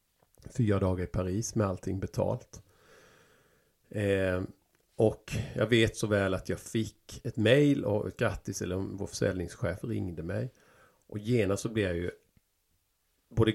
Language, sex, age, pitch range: Swedish, male, 50-69, 95-120 Hz